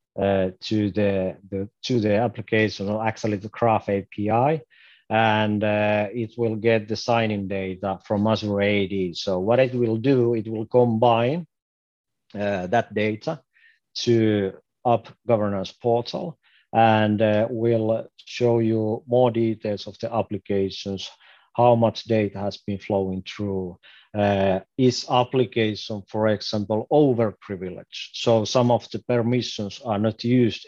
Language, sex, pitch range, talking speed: English, male, 100-120 Hz, 135 wpm